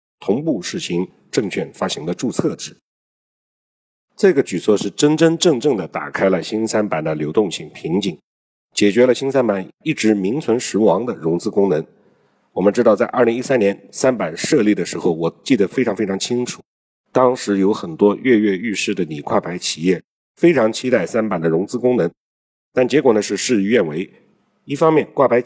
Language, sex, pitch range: Chinese, male, 95-130 Hz